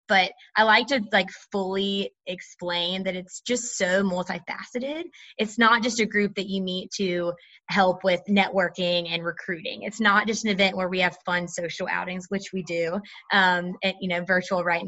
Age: 20-39